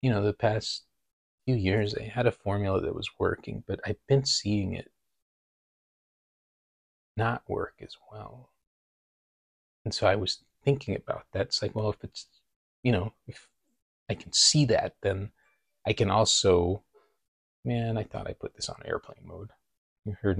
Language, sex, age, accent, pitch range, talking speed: English, male, 30-49, American, 95-120 Hz, 165 wpm